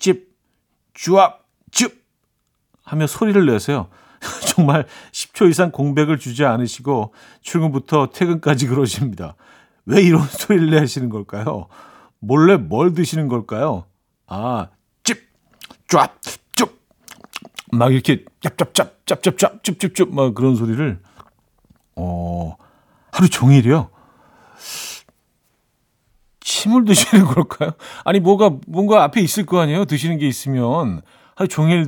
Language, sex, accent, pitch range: Korean, male, native, 120-175 Hz